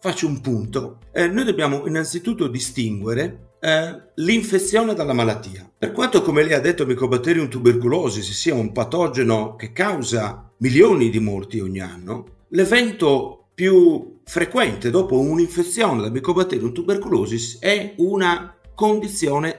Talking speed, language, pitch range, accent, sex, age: 125 wpm, Italian, 115-190 Hz, native, male, 50-69